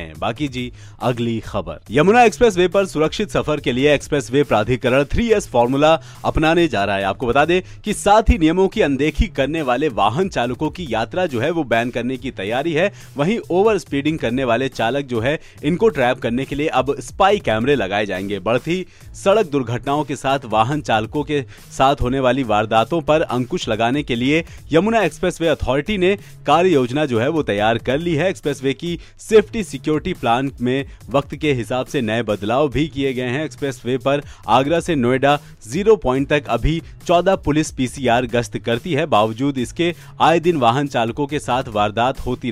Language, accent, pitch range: Hindi, native, 120-160 Hz